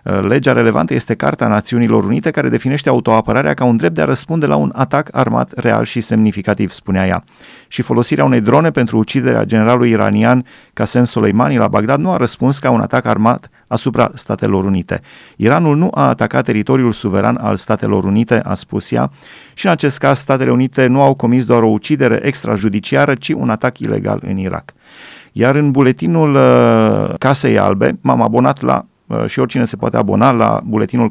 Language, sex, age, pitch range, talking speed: Romanian, male, 30-49, 110-130 Hz, 175 wpm